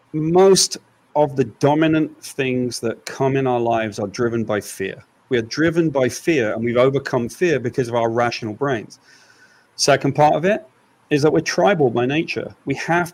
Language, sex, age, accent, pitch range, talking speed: English, male, 40-59, British, 120-155 Hz, 185 wpm